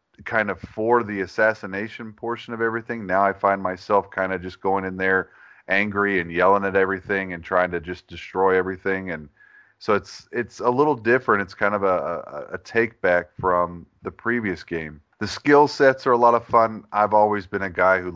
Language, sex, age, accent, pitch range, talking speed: English, male, 30-49, American, 90-110 Hz, 205 wpm